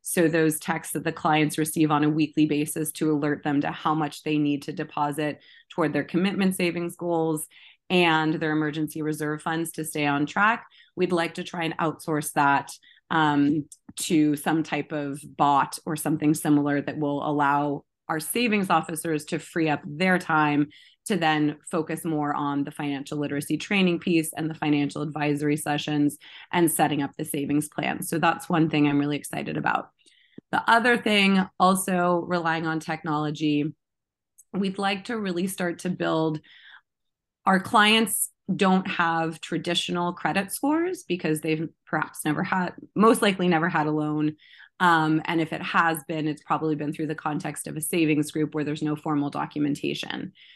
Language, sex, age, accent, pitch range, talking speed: English, female, 30-49, American, 150-175 Hz, 170 wpm